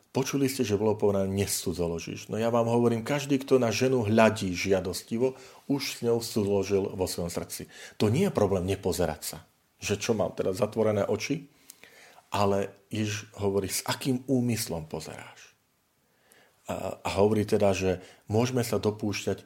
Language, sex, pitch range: Slovak, male, 90-120 Hz